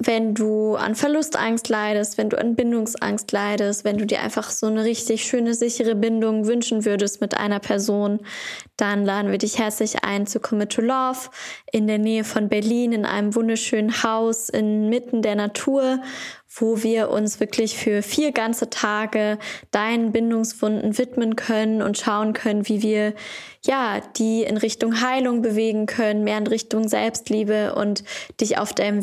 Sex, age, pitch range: female, 10-29, 210-230 Hz